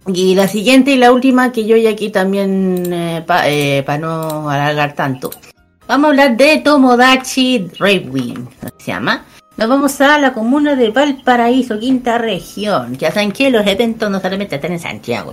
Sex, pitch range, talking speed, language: female, 170-240 Hz, 170 wpm, Spanish